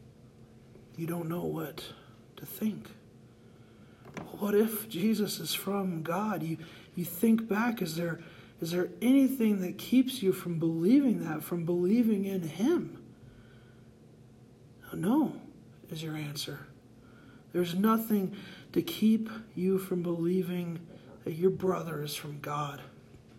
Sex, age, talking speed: male, 40-59, 120 wpm